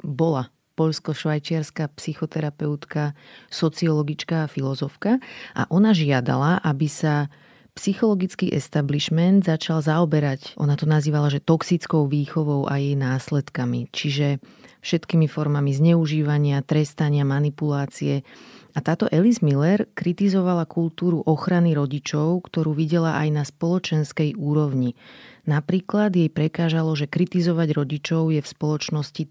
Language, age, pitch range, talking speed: Slovak, 30-49, 145-165 Hz, 110 wpm